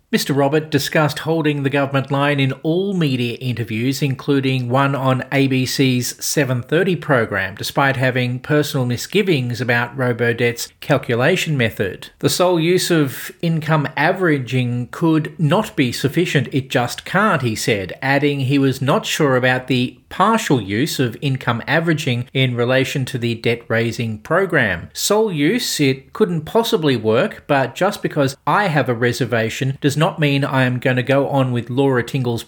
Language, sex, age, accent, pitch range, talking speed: English, male, 40-59, Australian, 125-150 Hz, 155 wpm